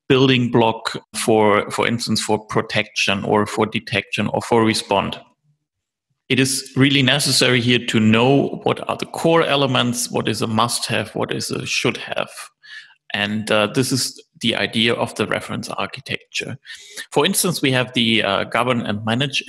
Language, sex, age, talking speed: English, male, 30-49, 160 wpm